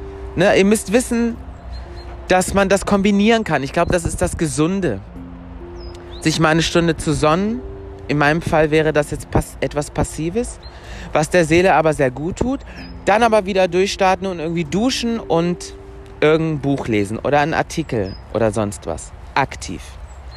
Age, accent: 30-49, German